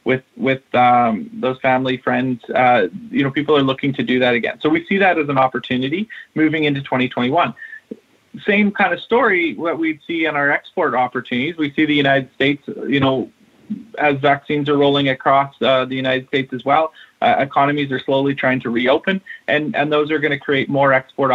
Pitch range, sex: 130-150 Hz, male